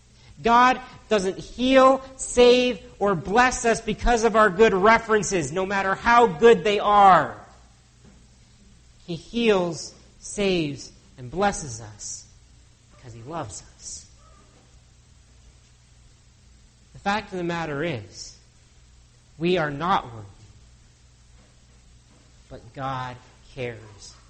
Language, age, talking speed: English, 40-59, 100 wpm